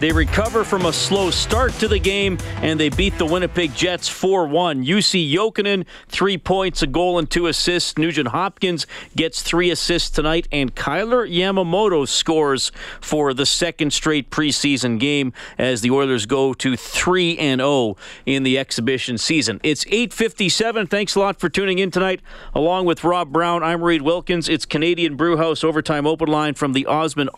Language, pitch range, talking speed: English, 140-175 Hz, 165 wpm